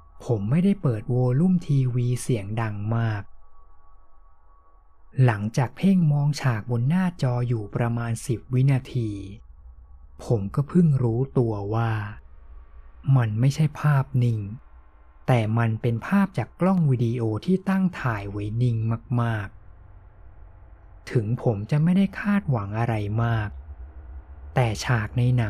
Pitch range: 85-130 Hz